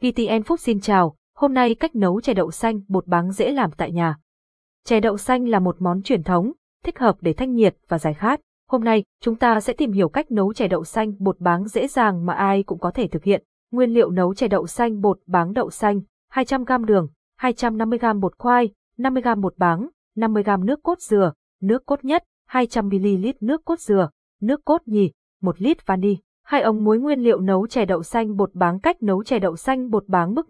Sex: female